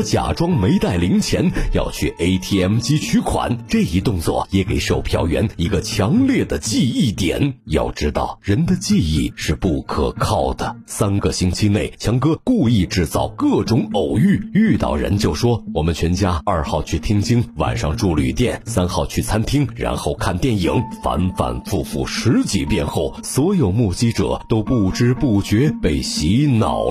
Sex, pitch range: male, 85-125 Hz